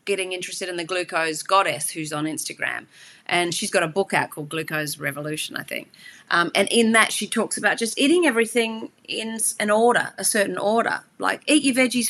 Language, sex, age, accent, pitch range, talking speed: English, female, 30-49, Australian, 175-225 Hz, 200 wpm